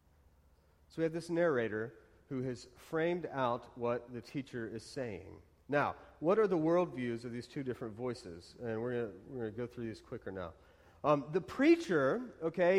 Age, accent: 40-59, American